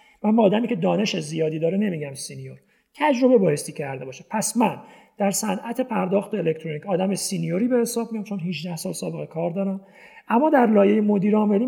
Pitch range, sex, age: 180-235 Hz, male, 40-59